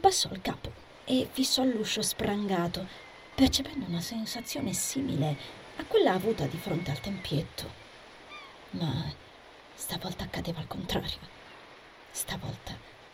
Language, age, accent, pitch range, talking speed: Italian, 30-49, native, 170-225 Hz, 110 wpm